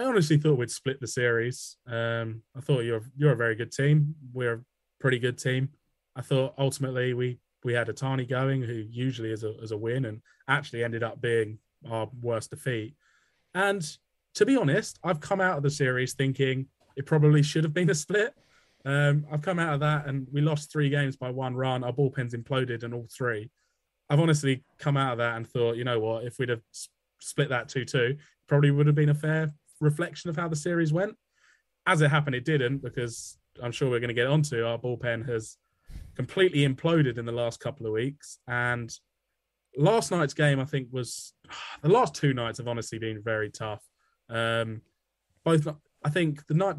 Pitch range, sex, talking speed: 115-150 Hz, male, 205 wpm